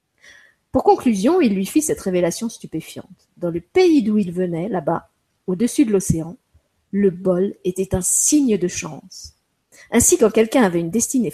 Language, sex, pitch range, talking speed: French, female, 180-240 Hz, 165 wpm